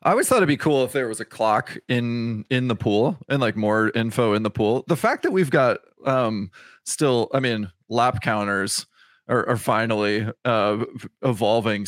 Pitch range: 105-125 Hz